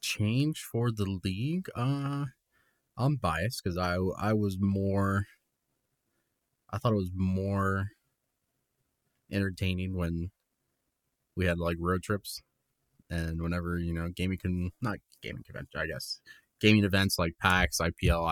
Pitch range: 85-100 Hz